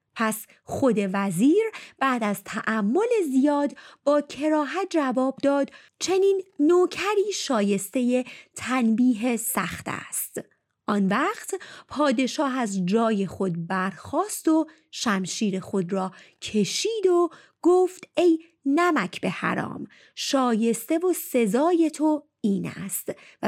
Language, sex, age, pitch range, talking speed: Persian, female, 30-49, 205-320 Hz, 105 wpm